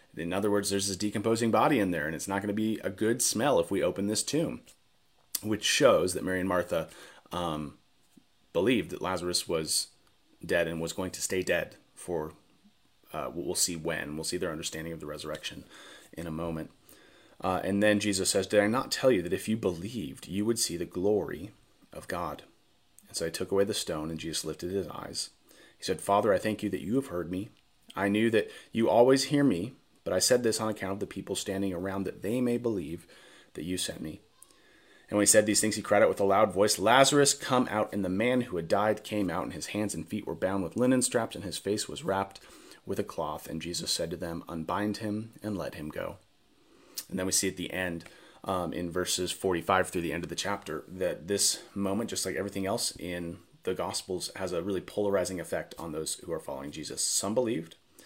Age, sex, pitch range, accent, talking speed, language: 30-49, male, 85-105 Hz, American, 225 wpm, English